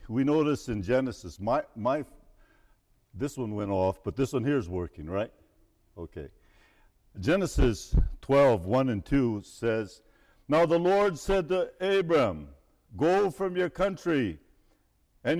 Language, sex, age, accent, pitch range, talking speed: English, male, 60-79, American, 105-180 Hz, 135 wpm